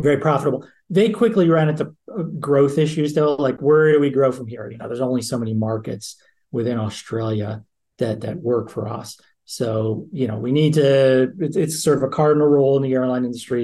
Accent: American